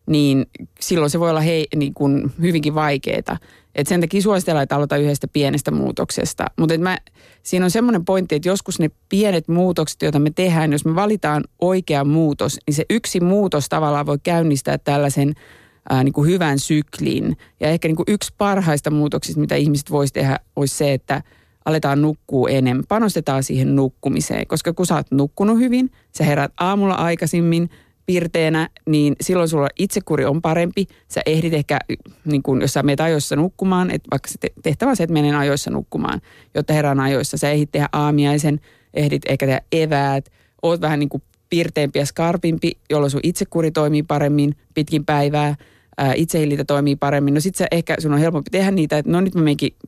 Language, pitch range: Finnish, 140-170 Hz